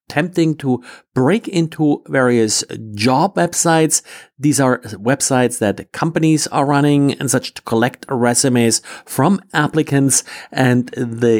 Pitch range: 120-160 Hz